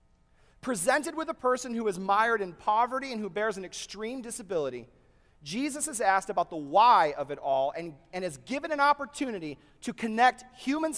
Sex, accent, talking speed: male, American, 180 wpm